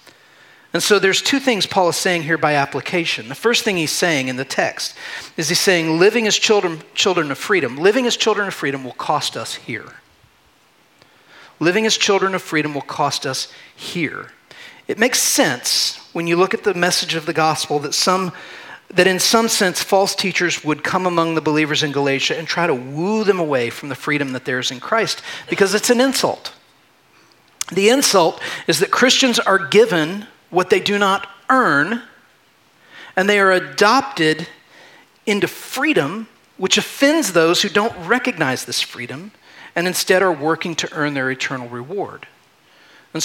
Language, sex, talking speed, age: English, male, 175 wpm, 40-59